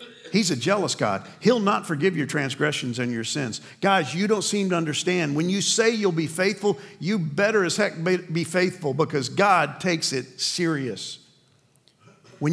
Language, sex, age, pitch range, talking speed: English, male, 50-69, 145-195 Hz, 170 wpm